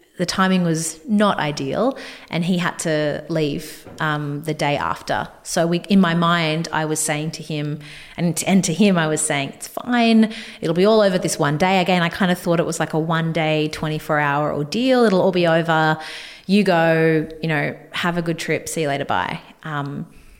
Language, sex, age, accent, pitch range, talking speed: English, female, 30-49, Australian, 155-180 Hz, 205 wpm